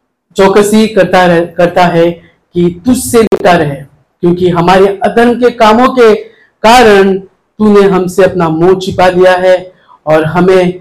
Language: Hindi